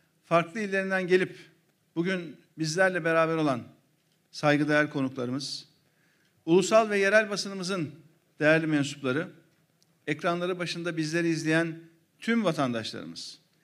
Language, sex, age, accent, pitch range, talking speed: Turkish, male, 50-69, native, 160-185 Hz, 90 wpm